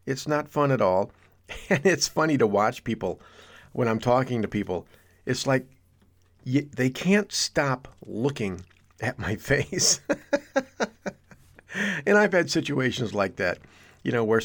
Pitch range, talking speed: 105-135 Hz, 145 wpm